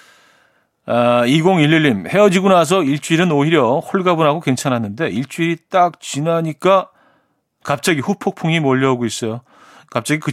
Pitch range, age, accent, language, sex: 125-175 Hz, 40-59, native, Korean, male